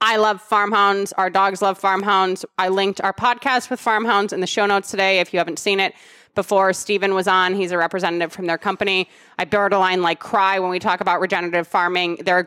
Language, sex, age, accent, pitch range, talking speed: English, female, 20-39, American, 195-240 Hz, 225 wpm